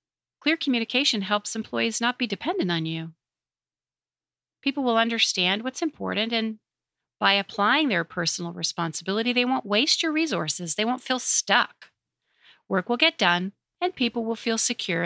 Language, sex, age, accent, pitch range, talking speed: English, female, 40-59, American, 175-245 Hz, 150 wpm